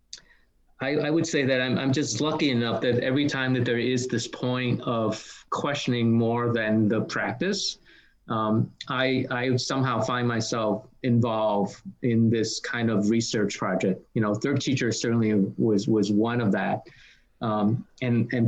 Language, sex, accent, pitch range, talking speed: English, male, American, 110-130 Hz, 160 wpm